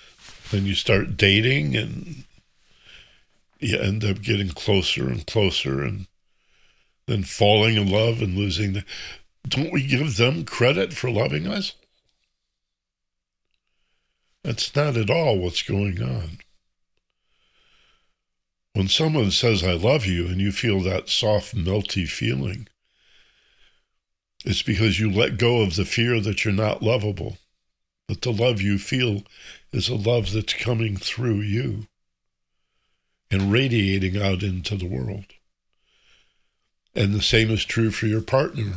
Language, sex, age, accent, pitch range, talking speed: English, male, 60-79, American, 95-115 Hz, 135 wpm